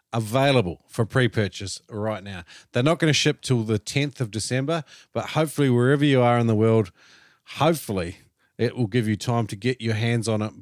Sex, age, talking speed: male, 40-59, 200 wpm